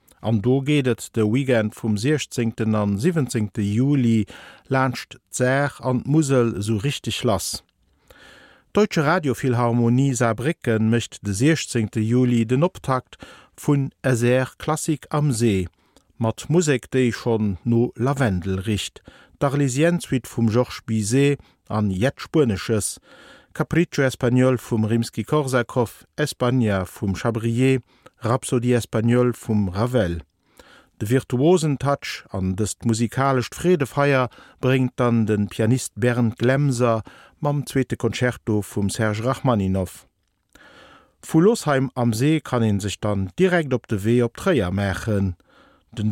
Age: 50-69